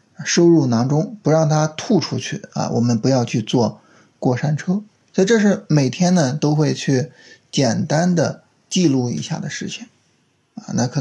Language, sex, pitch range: Chinese, male, 130-180 Hz